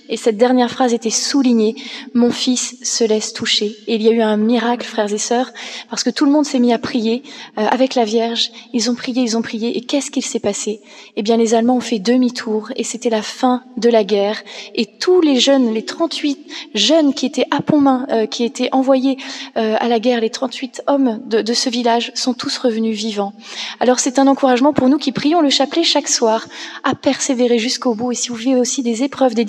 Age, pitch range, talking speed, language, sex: 20-39, 230-270 Hz, 235 wpm, French, female